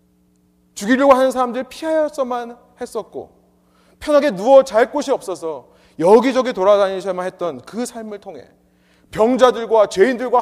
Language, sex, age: Korean, male, 30-49